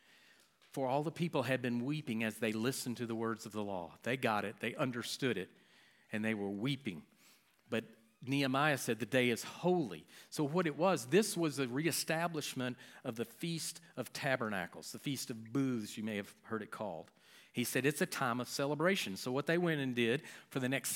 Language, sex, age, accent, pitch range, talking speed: English, male, 50-69, American, 120-160 Hz, 205 wpm